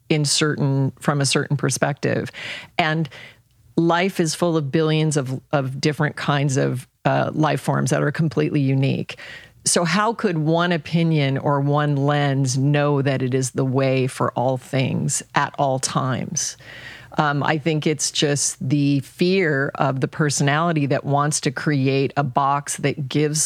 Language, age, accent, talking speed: English, 40-59, American, 160 wpm